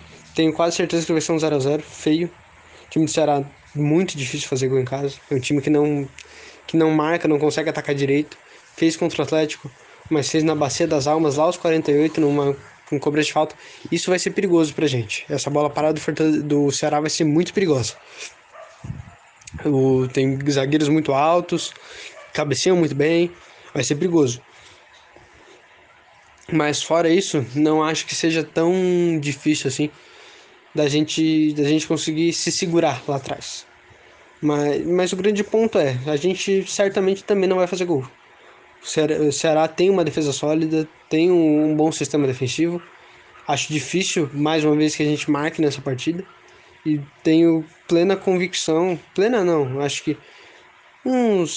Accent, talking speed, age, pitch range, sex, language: Brazilian, 170 wpm, 20-39, 145-170 Hz, male, Portuguese